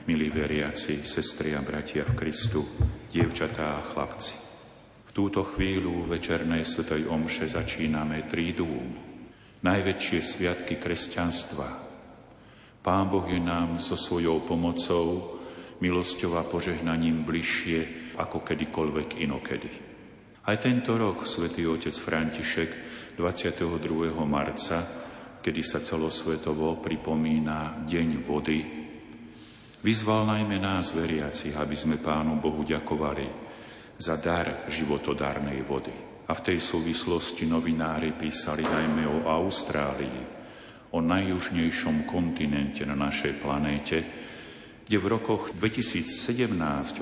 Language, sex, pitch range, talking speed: Slovak, male, 80-85 Hz, 105 wpm